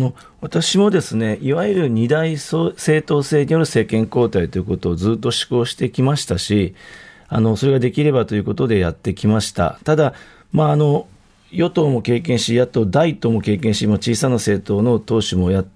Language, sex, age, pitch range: Japanese, male, 40-59, 105-145 Hz